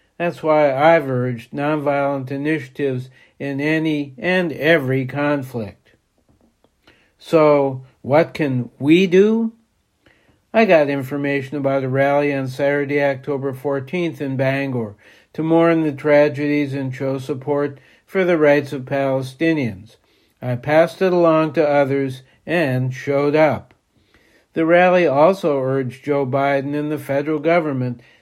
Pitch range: 130-155 Hz